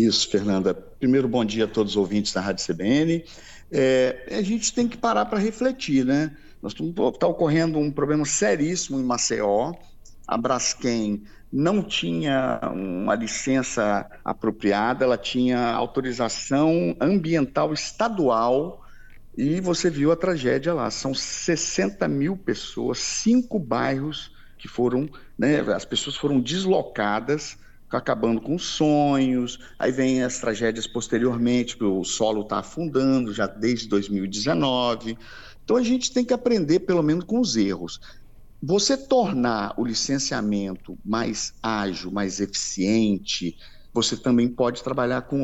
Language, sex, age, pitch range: Portuguese, male, 50-69, 110-155 Hz